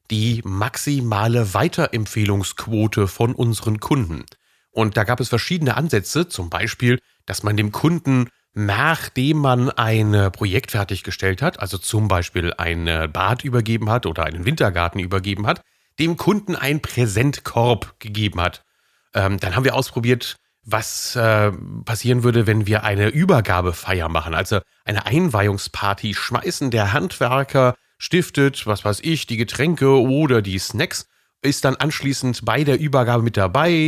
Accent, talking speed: German, 140 wpm